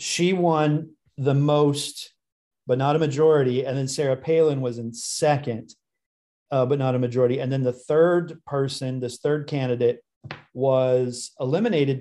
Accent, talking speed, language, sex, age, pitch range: American, 150 wpm, English, male, 40-59, 125-145 Hz